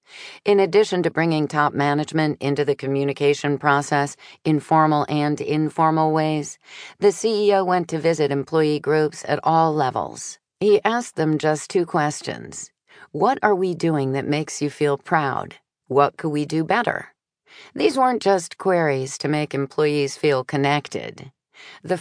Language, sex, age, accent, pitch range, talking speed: English, female, 40-59, American, 140-165 Hz, 150 wpm